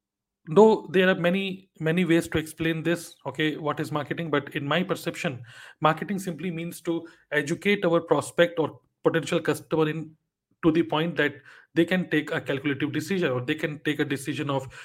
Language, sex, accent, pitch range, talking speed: Hindi, male, native, 145-190 Hz, 180 wpm